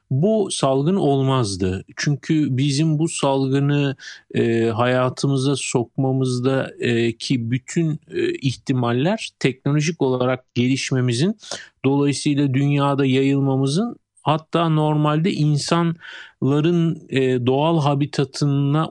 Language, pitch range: Turkish, 130-160 Hz